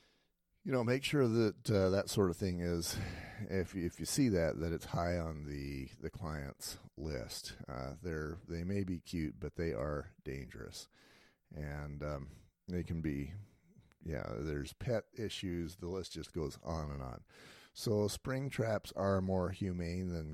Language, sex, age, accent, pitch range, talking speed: English, male, 40-59, American, 80-100 Hz, 170 wpm